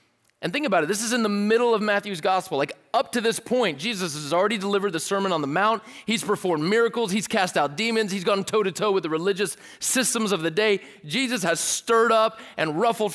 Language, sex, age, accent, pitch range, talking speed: English, male, 30-49, American, 180-245 Hz, 225 wpm